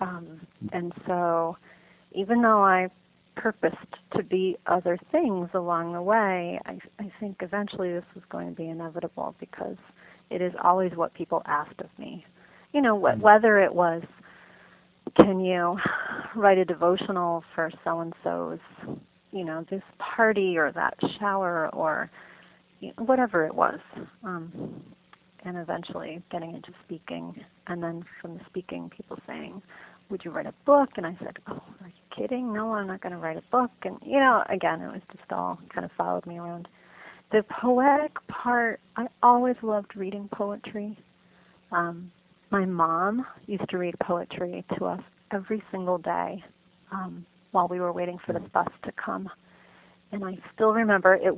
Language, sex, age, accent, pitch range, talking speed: English, female, 30-49, American, 175-210 Hz, 160 wpm